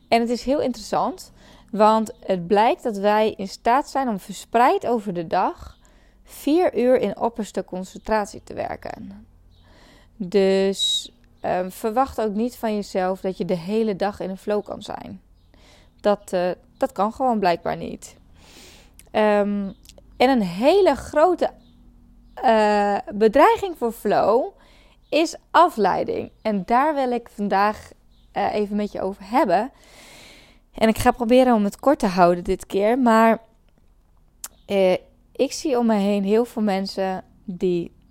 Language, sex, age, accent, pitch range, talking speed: Dutch, female, 20-39, Dutch, 190-240 Hz, 145 wpm